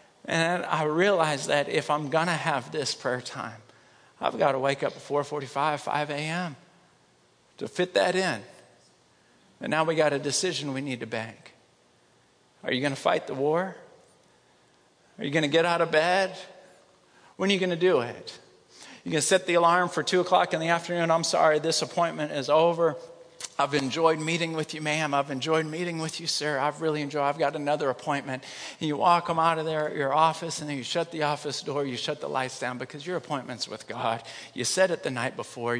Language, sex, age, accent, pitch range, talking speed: English, male, 50-69, American, 135-170 Hz, 215 wpm